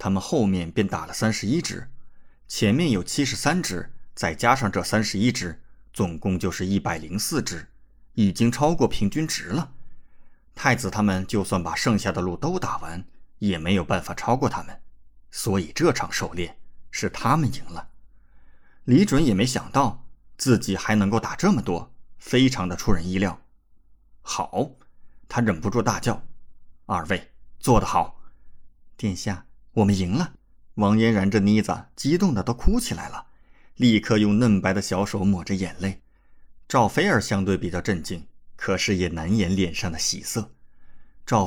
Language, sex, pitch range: Chinese, male, 90-110 Hz